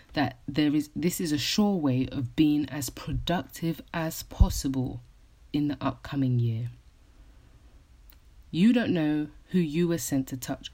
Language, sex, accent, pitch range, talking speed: English, female, British, 130-160 Hz, 150 wpm